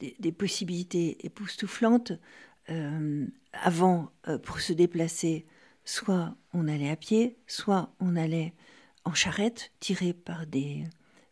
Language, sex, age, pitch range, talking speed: French, female, 60-79, 155-185 Hz, 120 wpm